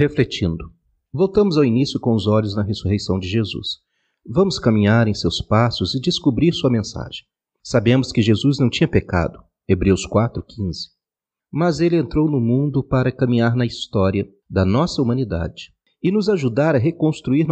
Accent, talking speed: Brazilian, 155 wpm